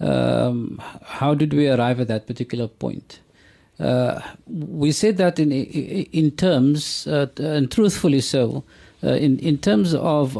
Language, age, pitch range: English, 50-69, 130-155 Hz